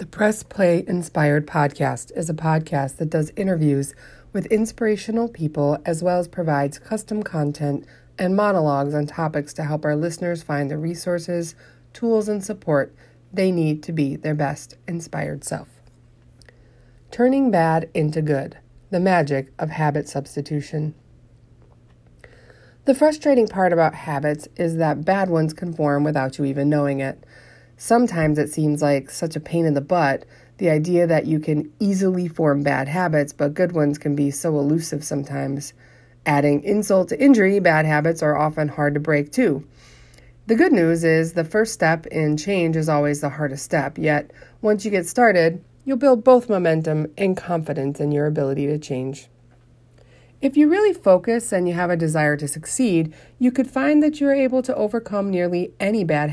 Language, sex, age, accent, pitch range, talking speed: English, female, 30-49, American, 145-185 Hz, 170 wpm